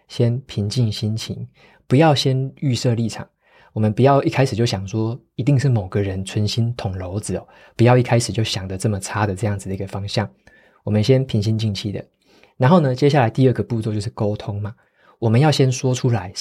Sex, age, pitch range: male, 20-39, 105-125 Hz